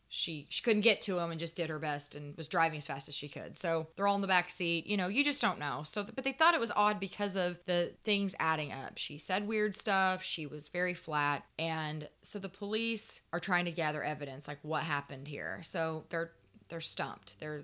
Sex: female